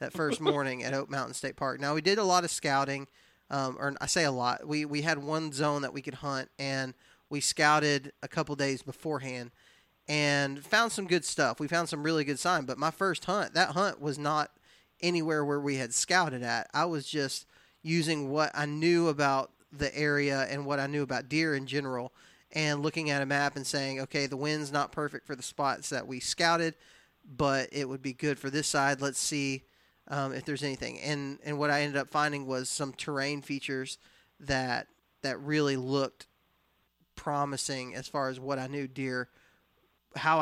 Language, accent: English, American